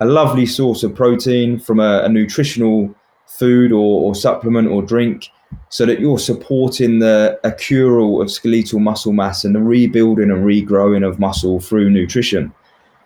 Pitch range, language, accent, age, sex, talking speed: 105-120 Hz, English, British, 20-39, male, 155 wpm